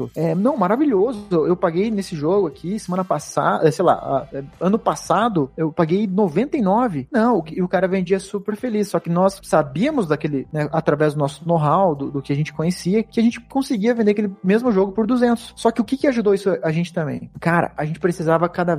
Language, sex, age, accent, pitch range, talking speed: Portuguese, male, 20-39, Brazilian, 145-195 Hz, 200 wpm